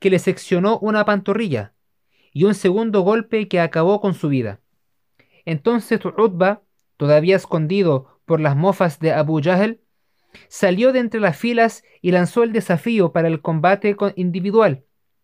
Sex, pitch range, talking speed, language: male, 170-215 Hz, 145 wpm, Spanish